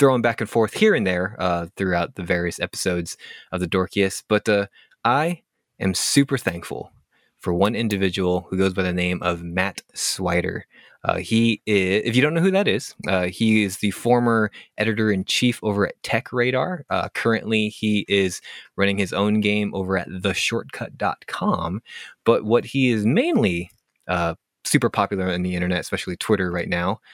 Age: 20-39